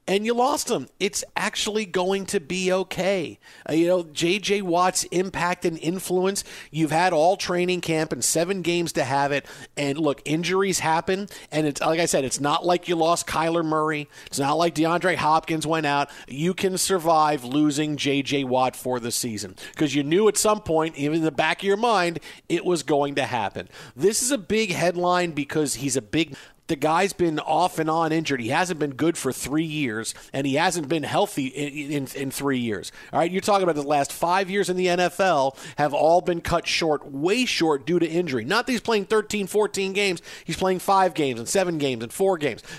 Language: English